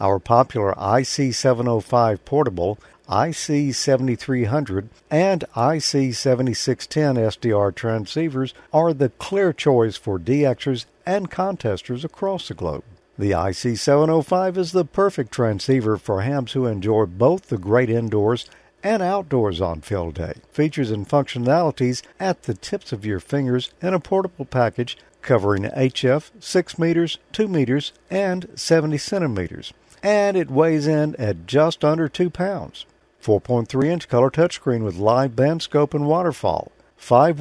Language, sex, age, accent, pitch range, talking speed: English, male, 50-69, American, 115-160 Hz, 130 wpm